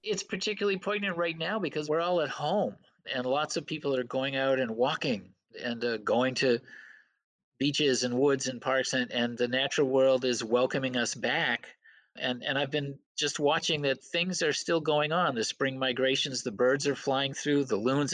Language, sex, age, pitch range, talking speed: English, male, 50-69, 125-150 Hz, 195 wpm